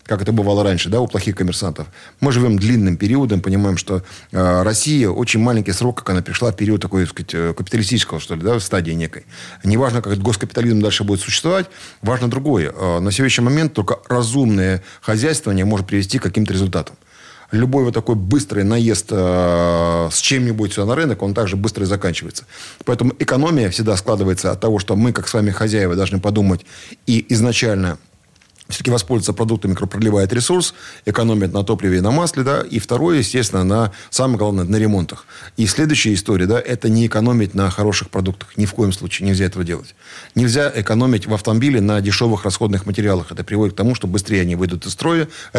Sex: male